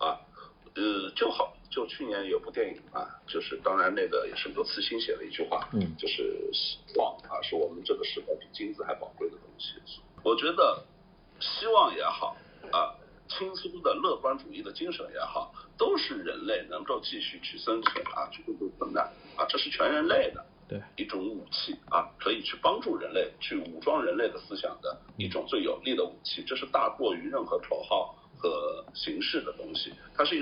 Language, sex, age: Chinese, male, 50-69